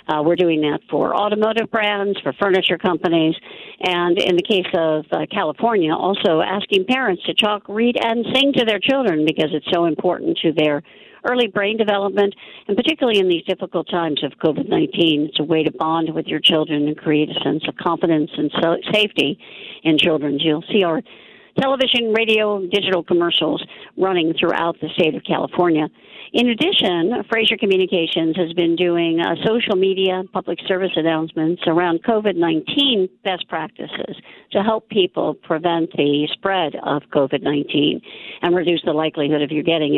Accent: American